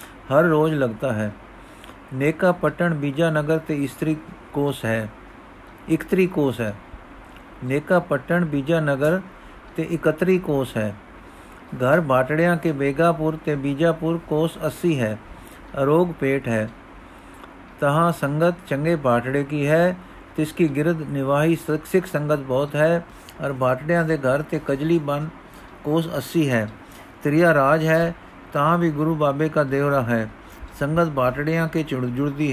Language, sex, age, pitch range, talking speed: Punjabi, male, 50-69, 135-160 Hz, 125 wpm